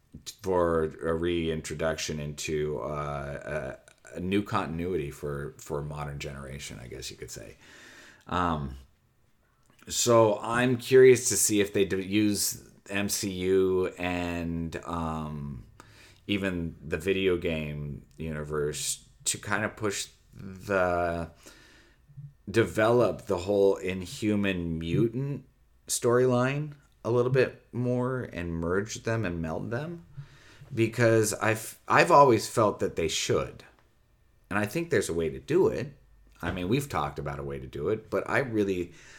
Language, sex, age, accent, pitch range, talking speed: English, male, 30-49, American, 80-115 Hz, 135 wpm